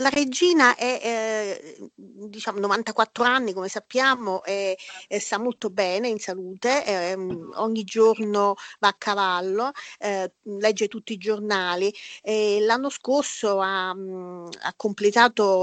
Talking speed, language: 135 wpm, Italian